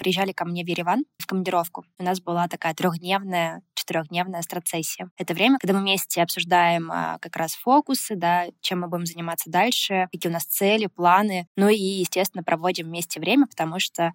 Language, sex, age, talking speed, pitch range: Russian, female, 20-39, 175 wpm, 175-200 Hz